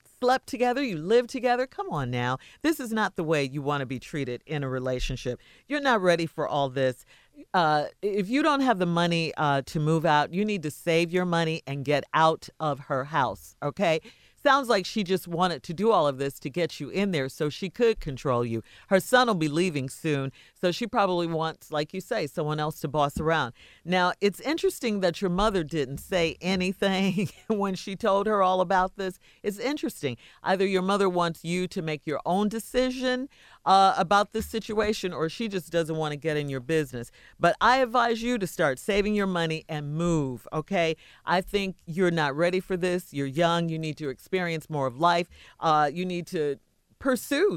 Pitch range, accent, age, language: 145-195 Hz, American, 50-69, English